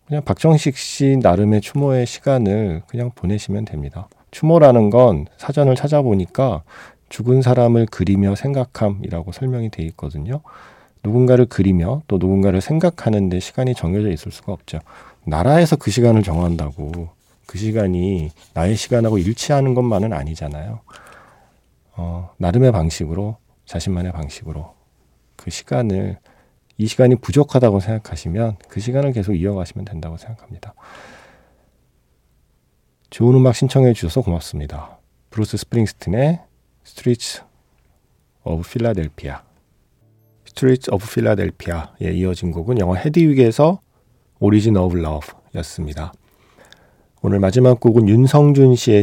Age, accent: 40-59, native